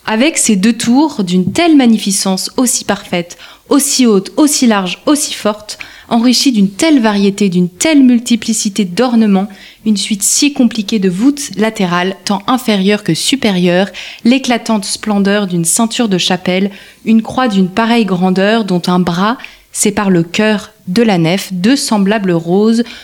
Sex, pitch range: female, 195-235 Hz